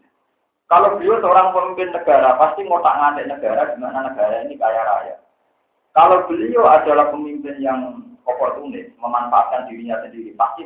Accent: native